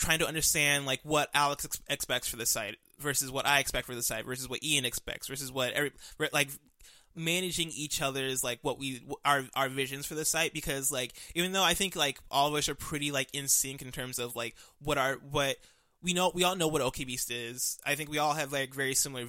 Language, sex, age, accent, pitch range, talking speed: English, male, 20-39, American, 125-150 Hz, 245 wpm